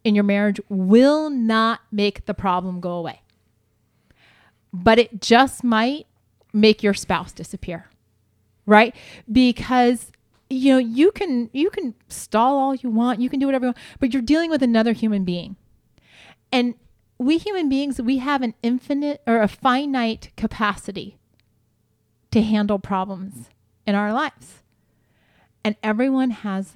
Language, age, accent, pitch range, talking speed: English, 30-49, American, 190-265 Hz, 140 wpm